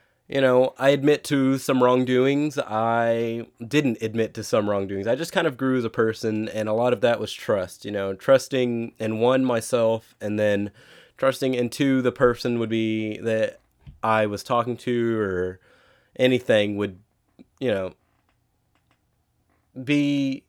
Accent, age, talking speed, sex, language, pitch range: American, 20-39, 160 wpm, male, English, 105-130 Hz